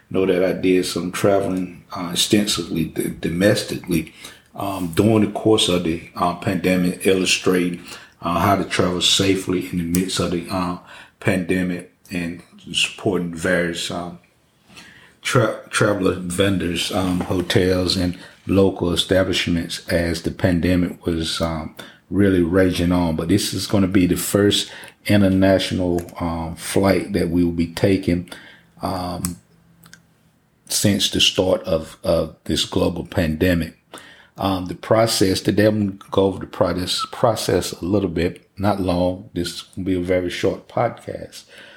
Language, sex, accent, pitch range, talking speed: English, male, American, 85-95 Hz, 140 wpm